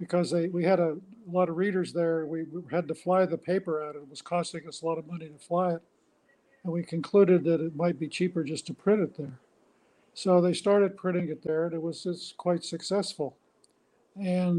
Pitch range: 155-180 Hz